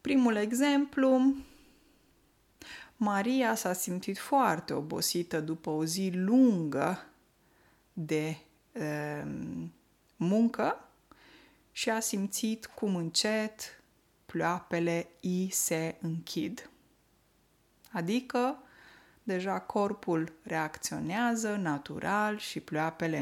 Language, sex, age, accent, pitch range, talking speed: Romanian, female, 20-39, native, 160-220 Hz, 80 wpm